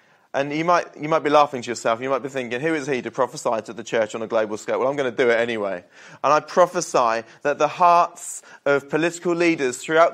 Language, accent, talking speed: English, British, 250 wpm